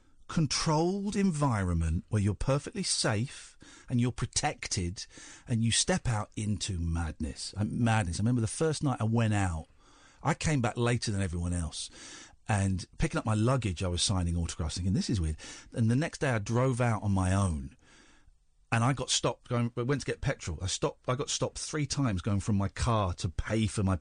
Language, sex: English, male